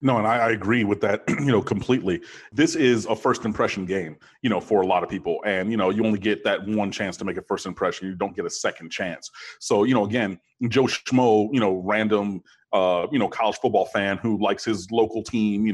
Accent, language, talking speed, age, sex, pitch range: American, English, 240 wpm, 30-49, male, 105-140 Hz